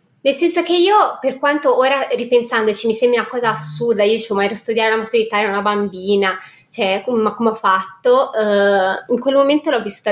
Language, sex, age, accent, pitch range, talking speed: Italian, female, 20-39, native, 200-230 Hz, 210 wpm